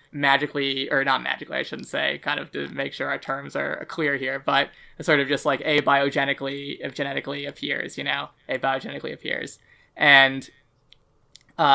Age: 20-39